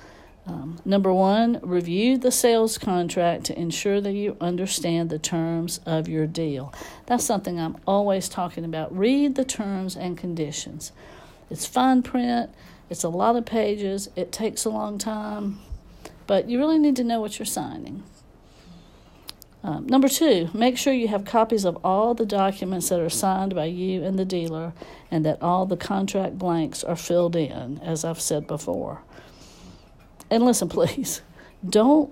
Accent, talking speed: American, 165 wpm